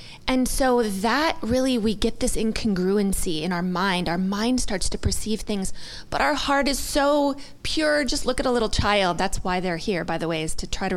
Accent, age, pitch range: American, 20-39, 195-250 Hz